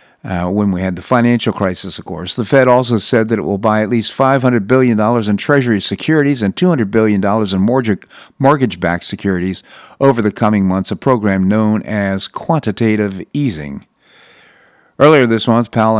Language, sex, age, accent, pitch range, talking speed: English, male, 50-69, American, 100-130 Hz, 165 wpm